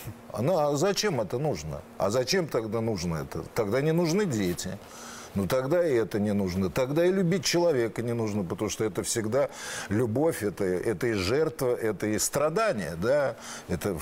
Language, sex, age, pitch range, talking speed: Russian, male, 50-69, 105-155 Hz, 170 wpm